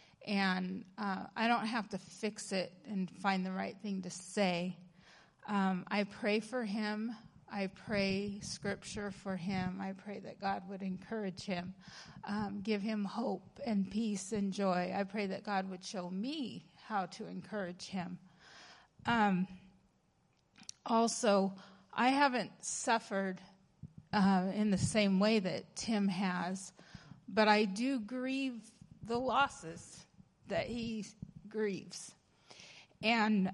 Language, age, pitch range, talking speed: English, 30-49, 180-215 Hz, 130 wpm